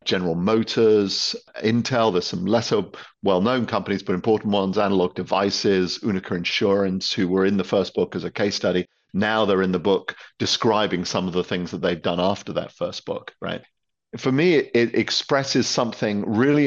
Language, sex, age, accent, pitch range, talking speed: English, male, 50-69, British, 95-120 Hz, 175 wpm